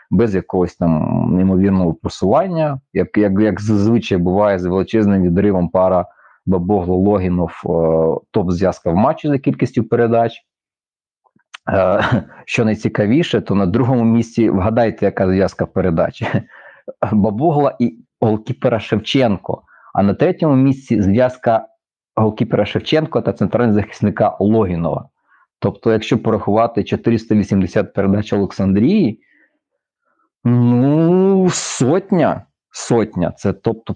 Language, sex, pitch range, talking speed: Ukrainian, male, 95-120 Hz, 105 wpm